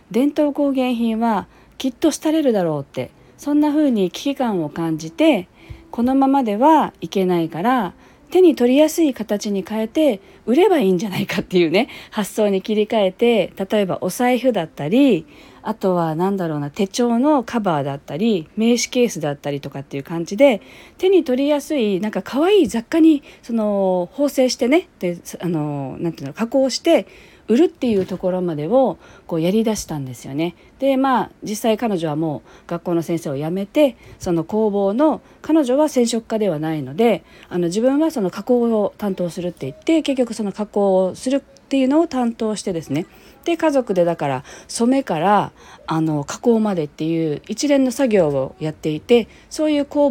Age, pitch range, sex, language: 40-59, 175-265 Hz, female, Japanese